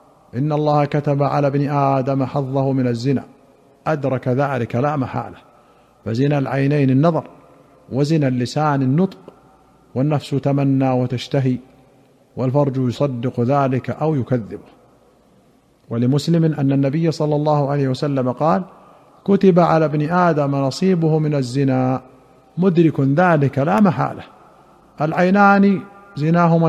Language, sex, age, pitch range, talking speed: Arabic, male, 50-69, 135-155 Hz, 110 wpm